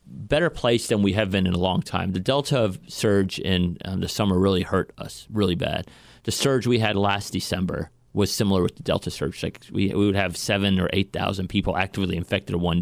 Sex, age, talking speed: male, 30-49, 220 wpm